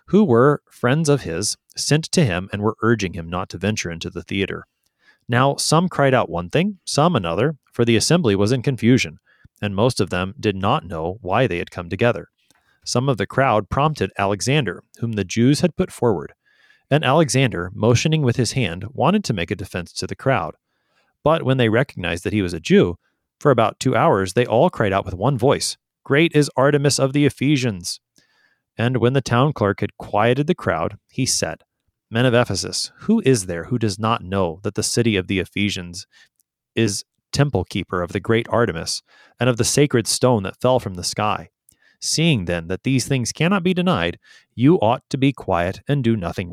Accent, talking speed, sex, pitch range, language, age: American, 200 wpm, male, 95-140 Hz, English, 30-49